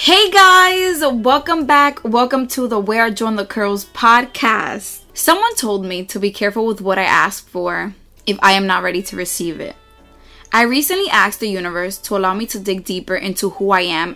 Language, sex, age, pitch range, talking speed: English, female, 20-39, 195-255 Hz, 200 wpm